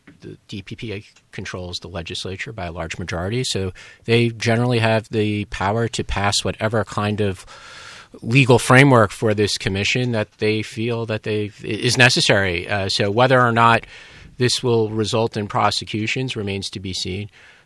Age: 40-59